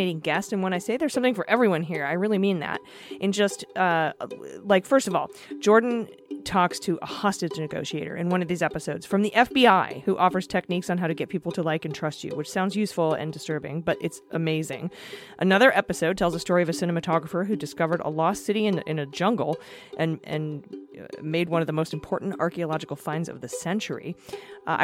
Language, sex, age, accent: English, female, 30-49, American